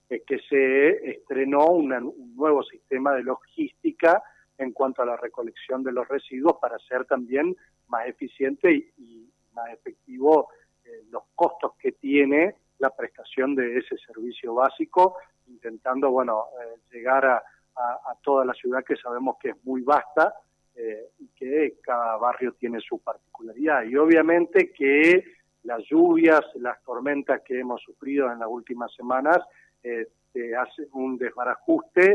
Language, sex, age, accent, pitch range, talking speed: Spanish, male, 40-59, Argentinian, 120-175 Hz, 145 wpm